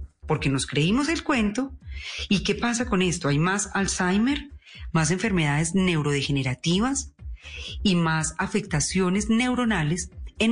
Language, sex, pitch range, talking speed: Spanish, female, 140-210 Hz, 120 wpm